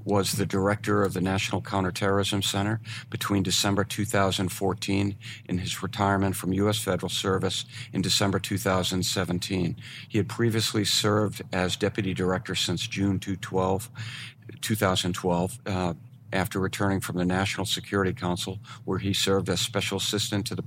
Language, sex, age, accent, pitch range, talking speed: English, male, 50-69, American, 95-110 Hz, 135 wpm